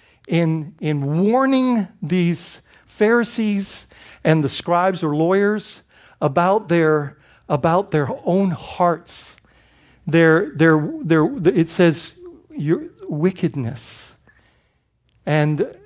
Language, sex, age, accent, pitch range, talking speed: English, male, 50-69, American, 150-200 Hz, 90 wpm